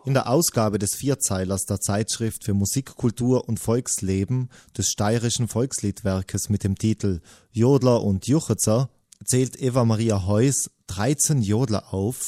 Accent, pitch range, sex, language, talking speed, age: German, 100-130 Hz, male, German, 125 wpm, 20-39